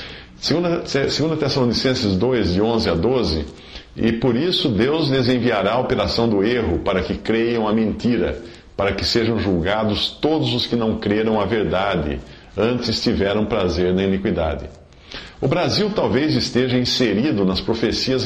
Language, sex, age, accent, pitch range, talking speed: English, male, 50-69, Brazilian, 95-125 Hz, 145 wpm